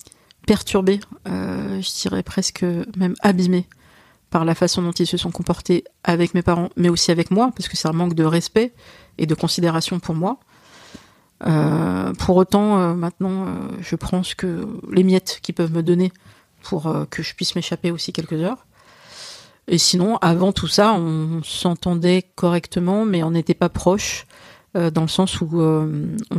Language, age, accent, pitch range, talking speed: French, 50-69, French, 160-185 Hz, 175 wpm